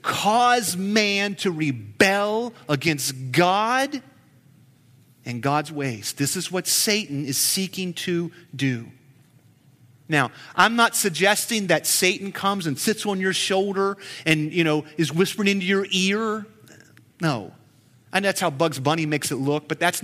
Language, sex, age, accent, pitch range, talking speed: English, male, 40-59, American, 135-190 Hz, 145 wpm